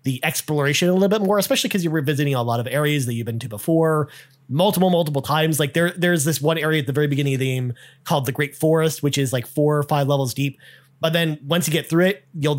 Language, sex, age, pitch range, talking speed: English, male, 30-49, 135-175 Hz, 260 wpm